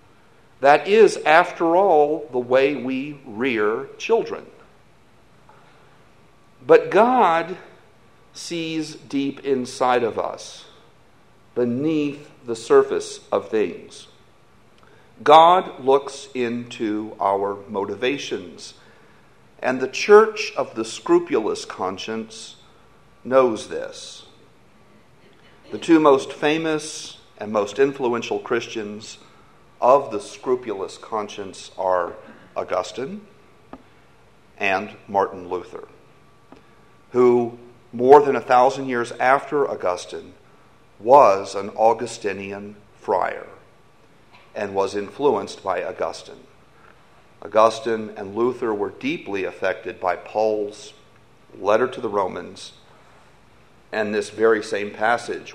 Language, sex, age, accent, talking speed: English, male, 50-69, American, 95 wpm